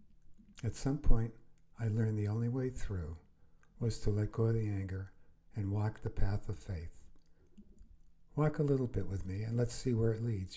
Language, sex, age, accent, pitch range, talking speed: English, male, 60-79, American, 95-115 Hz, 195 wpm